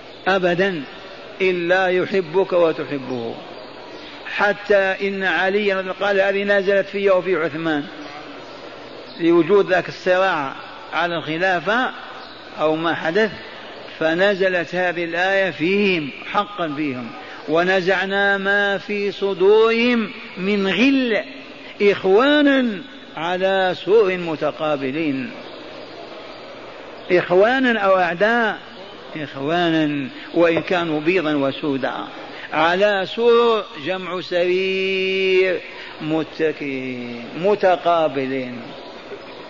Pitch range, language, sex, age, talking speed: 160-200 Hz, Arabic, male, 50-69, 75 wpm